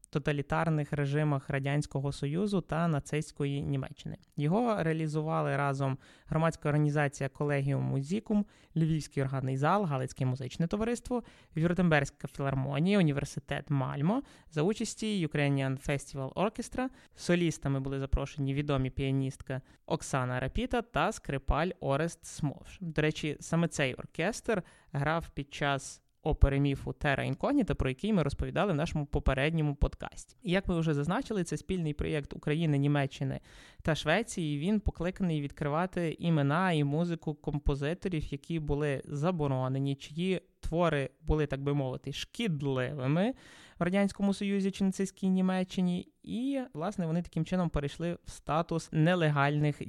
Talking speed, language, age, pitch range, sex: 125 wpm, Ukrainian, 20-39, 140-180 Hz, male